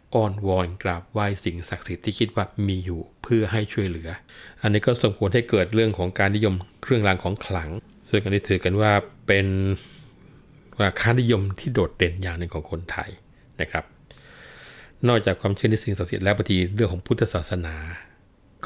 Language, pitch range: Thai, 90-110 Hz